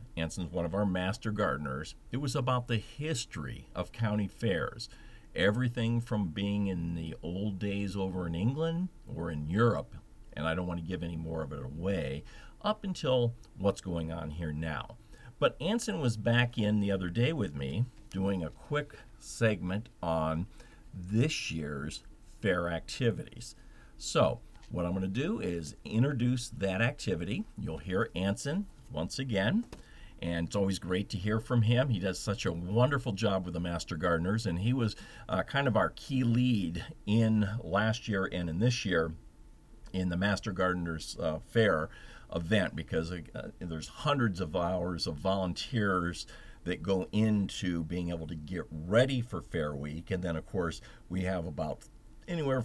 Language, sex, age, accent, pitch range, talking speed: English, male, 50-69, American, 85-115 Hz, 165 wpm